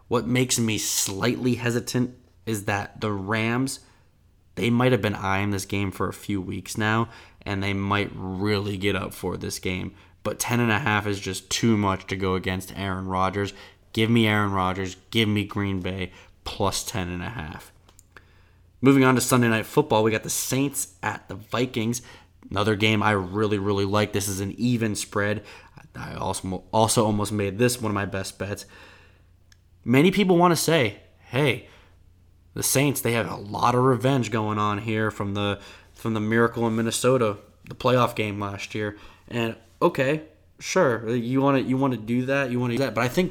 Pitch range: 95-120 Hz